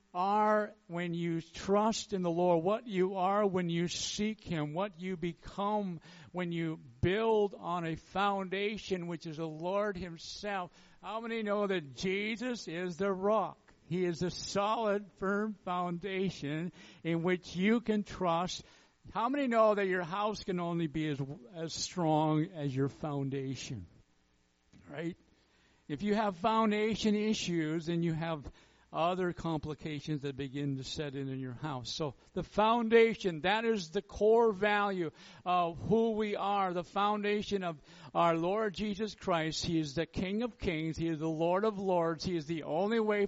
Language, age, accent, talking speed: English, 60-79, American, 160 wpm